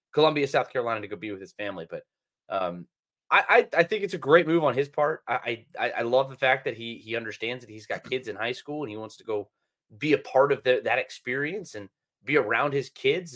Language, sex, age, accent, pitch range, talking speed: English, male, 30-49, American, 125-185 Hz, 250 wpm